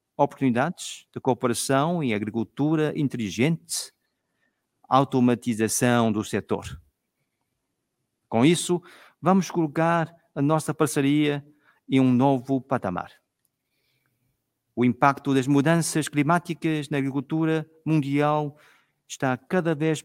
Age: 50-69